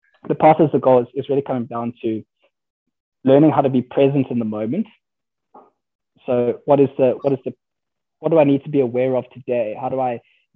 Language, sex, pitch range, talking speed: English, male, 115-130 Hz, 220 wpm